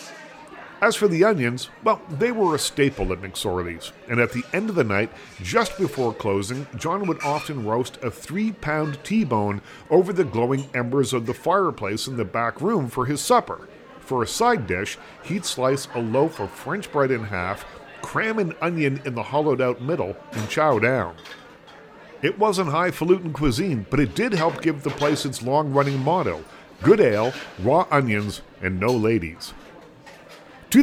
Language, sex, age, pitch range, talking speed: English, male, 50-69, 125-175 Hz, 175 wpm